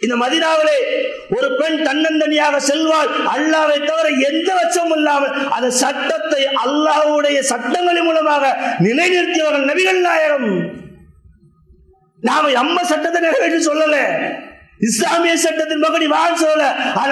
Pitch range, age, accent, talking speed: 275-320 Hz, 50-69, Indian, 95 wpm